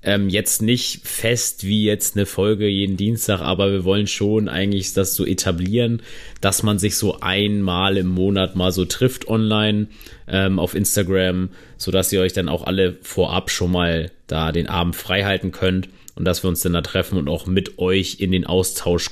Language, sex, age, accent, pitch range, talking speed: German, male, 30-49, German, 90-105 Hz, 195 wpm